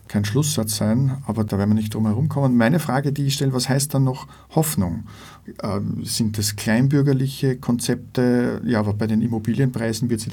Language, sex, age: German, male, 50-69